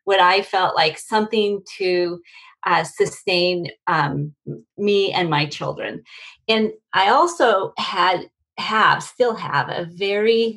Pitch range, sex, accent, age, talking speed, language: 170-220 Hz, female, American, 40-59, 125 wpm, English